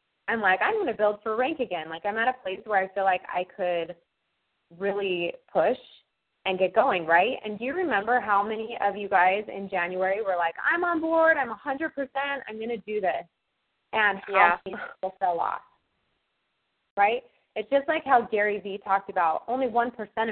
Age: 20-39